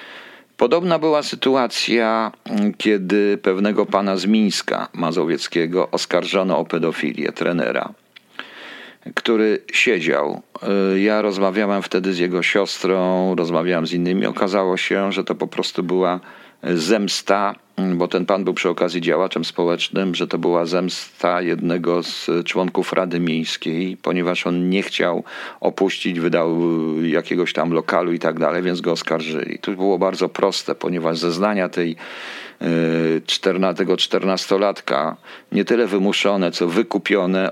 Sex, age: male, 50-69